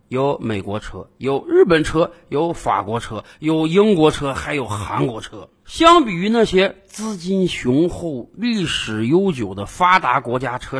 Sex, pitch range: male, 145-235 Hz